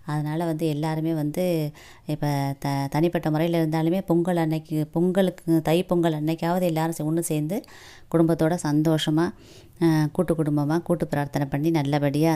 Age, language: 20-39, Tamil